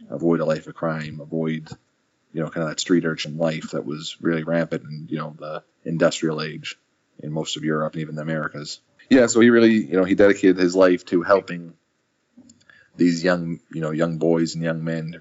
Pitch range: 80-90 Hz